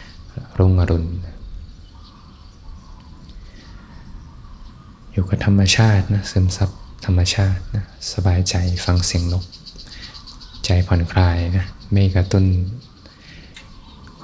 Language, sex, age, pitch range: Thai, male, 20-39, 85-95 Hz